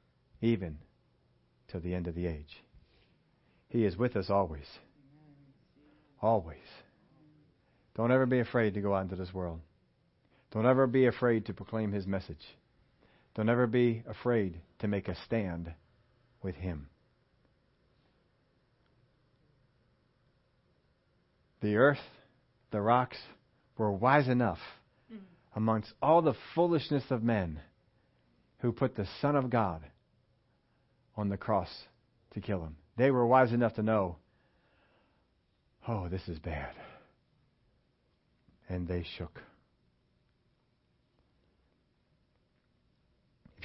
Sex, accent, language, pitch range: male, American, English, 95-125 Hz